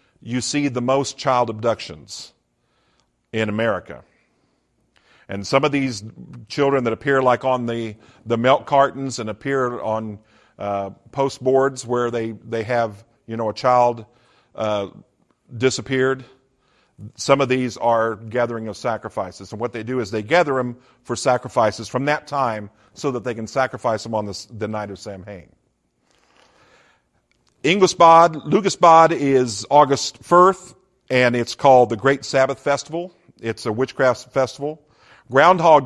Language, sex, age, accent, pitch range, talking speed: English, male, 50-69, American, 115-145 Hz, 140 wpm